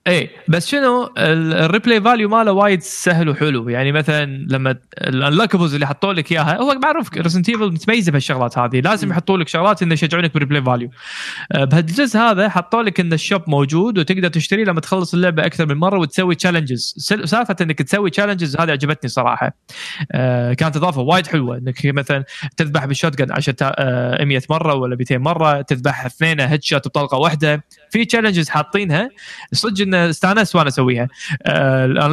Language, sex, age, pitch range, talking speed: Arabic, male, 20-39, 135-185 Hz, 155 wpm